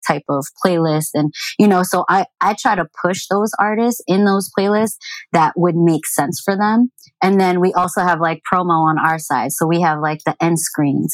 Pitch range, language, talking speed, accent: 155-175 Hz, English, 215 wpm, American